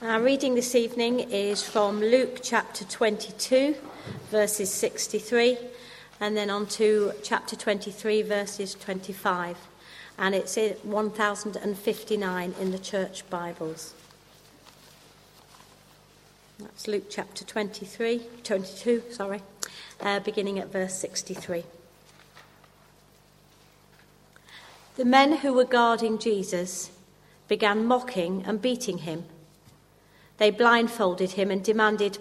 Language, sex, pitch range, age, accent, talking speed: English, female, 185-230 Hz, 40-59, British, 100 wpm